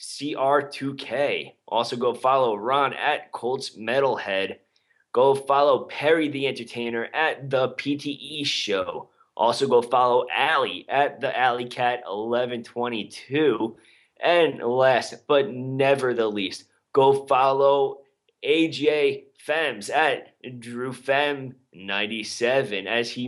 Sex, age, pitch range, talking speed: male, 20-39, 110-135 Hz, 110 wpm